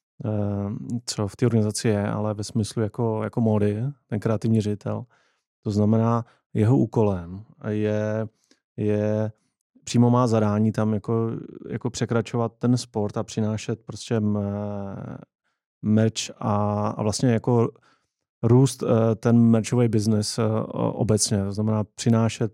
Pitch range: 105-115 Hz